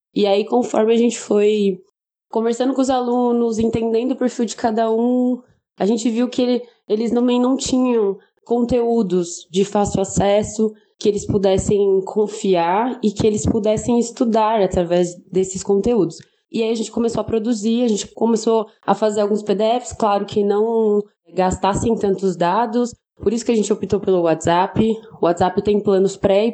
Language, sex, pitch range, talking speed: Portuguese, female, 190-230 Hz, 165 wpm